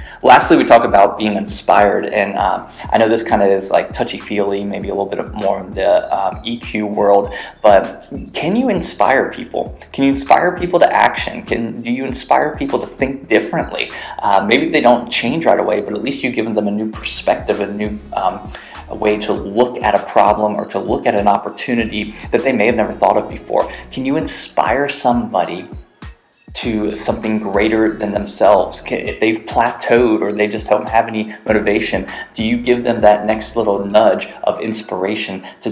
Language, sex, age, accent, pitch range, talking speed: English, male, 20-39, American, 105-120 Hz, 195 wpm